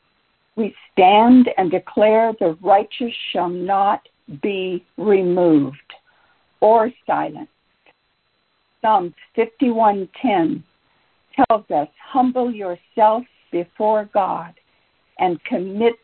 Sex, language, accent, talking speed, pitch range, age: female, English, American, 80 wpm, 180-245 Hz, 60-79